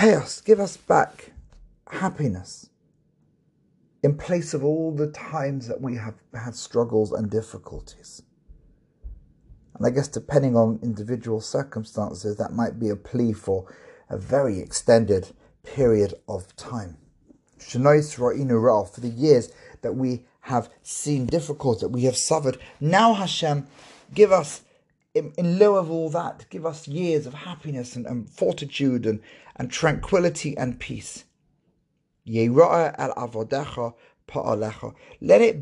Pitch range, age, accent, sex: 120-165 Hz, 40-59, British, male